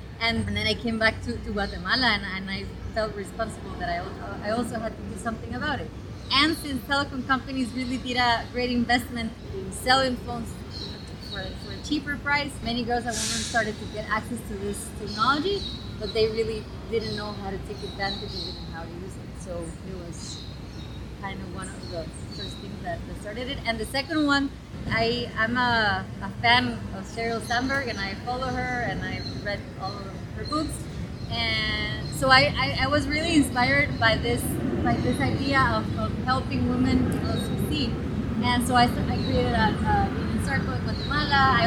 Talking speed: 195 wpm